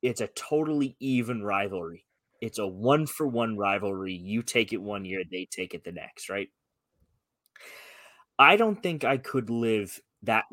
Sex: male